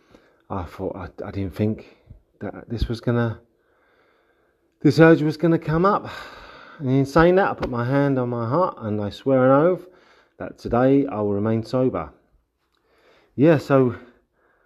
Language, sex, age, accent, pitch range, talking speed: English, male, 30-49, British, 105-140 Hz, 165 wpm